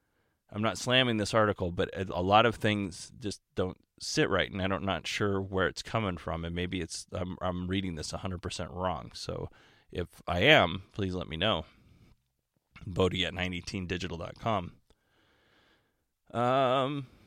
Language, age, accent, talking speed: English, 20-39, American, 155 wpm